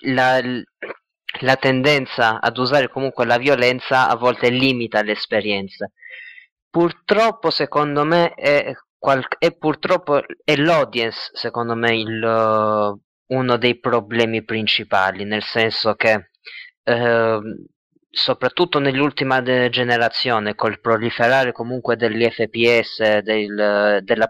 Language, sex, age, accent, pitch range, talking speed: Italian, male, 20-39, native, 115-135 Hz, 105 wpm